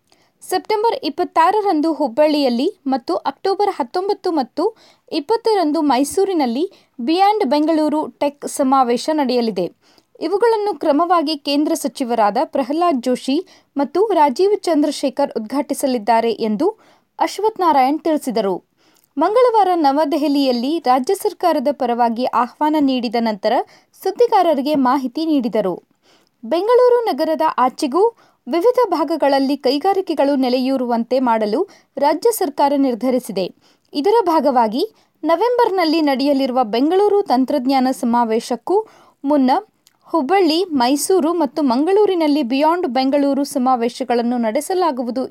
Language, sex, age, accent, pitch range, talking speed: Kannada, female, 20-39, native, 260-355 Hz, 85 wpm